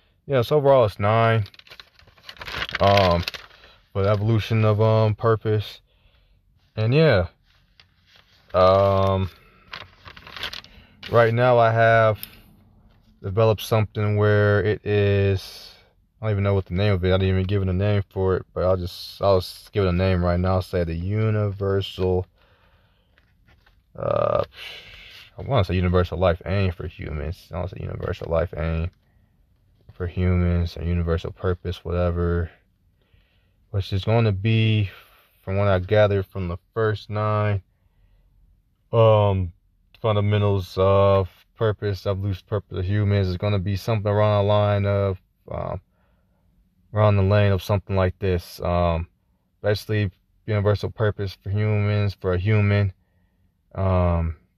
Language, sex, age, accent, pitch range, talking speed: English, male, 20-39, American, 90-105 Hz, 140 wpm